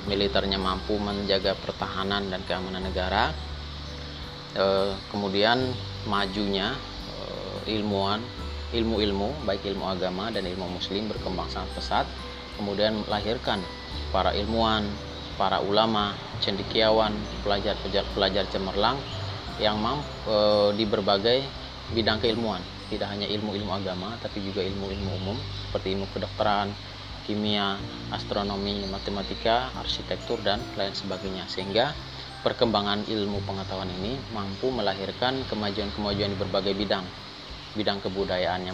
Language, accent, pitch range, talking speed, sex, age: Indonesian, native, 95-105 Hz, 105 wpm, male, 30-49